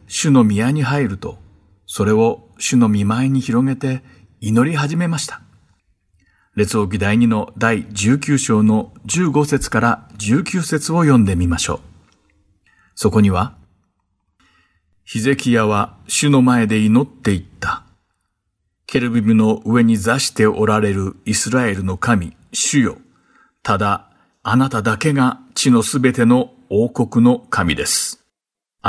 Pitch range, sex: 105-130 Hz, male